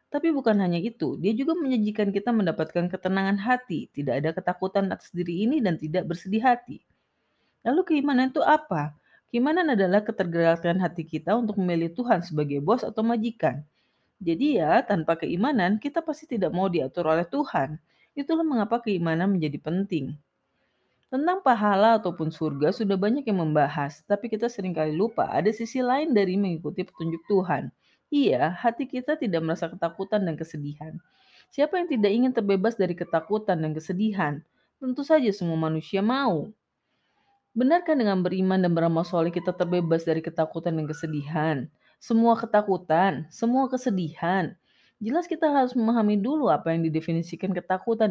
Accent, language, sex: native, Indonesian, female